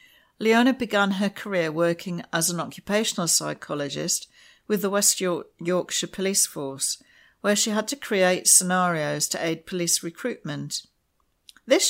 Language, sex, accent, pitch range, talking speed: English, female, British, 165-210 Hz, 130 wpm